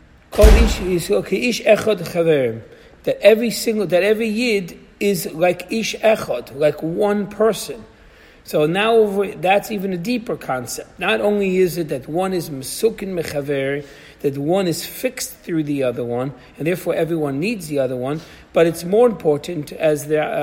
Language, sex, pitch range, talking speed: English, male, 145-190 Hz, 150 wpm